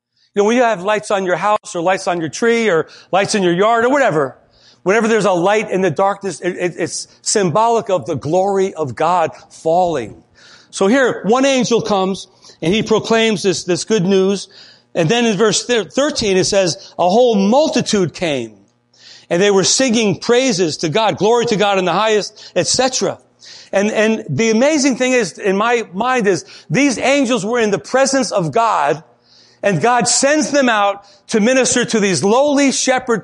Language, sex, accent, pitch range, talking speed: English, male, American, 185-255 Hz, 190 wpm